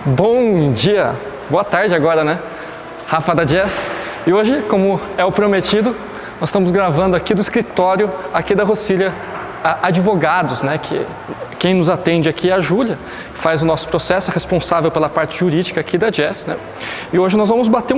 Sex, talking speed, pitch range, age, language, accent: male, 175 wpm, 170-210 Hz, 20-39, Portuguese, Brazilian